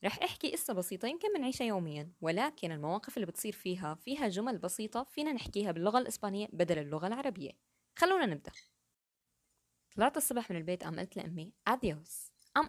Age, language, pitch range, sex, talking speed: 20-39, Arabic, 175-255 Hz, female, 155 wpm